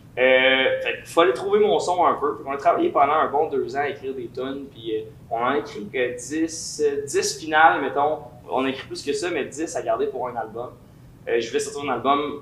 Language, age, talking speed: French, 20-39, 240 wpm